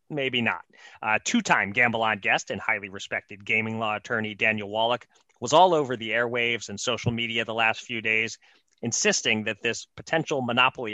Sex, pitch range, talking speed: male, 110-135 Hz, 175 wpm